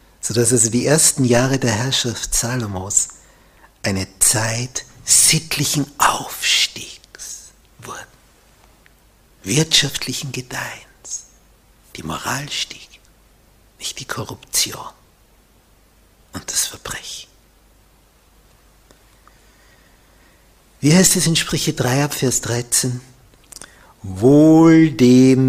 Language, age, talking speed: German, 60-79, 80 wpm